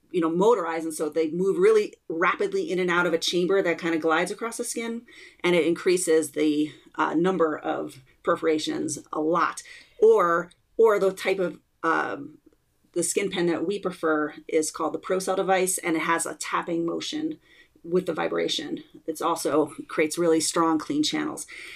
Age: 30-49